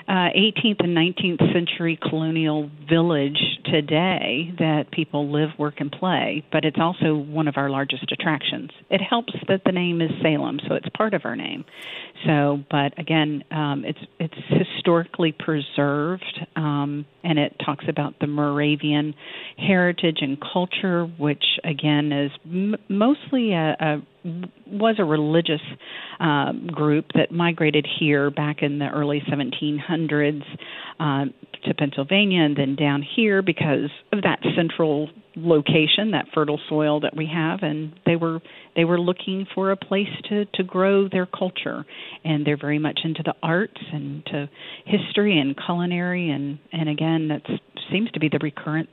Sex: female